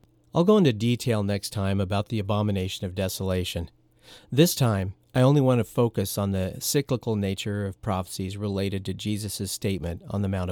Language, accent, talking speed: English, American, 175 wpm